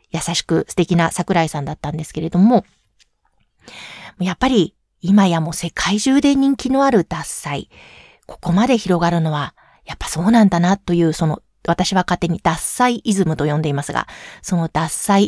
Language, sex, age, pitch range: Japanese, female, 40-59, 165-220 Hz